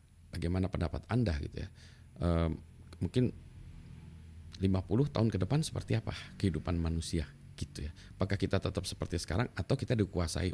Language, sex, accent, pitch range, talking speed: Indonesian, male, native, 80-105 Hz, 140 wpm